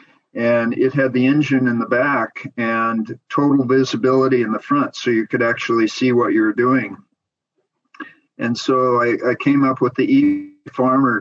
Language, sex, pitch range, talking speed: English, male, 115-135 Hz, 165 wpm